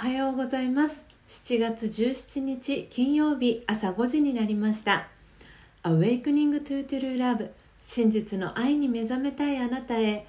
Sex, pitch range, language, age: female, 195-245 Hz, Japanese, 40-59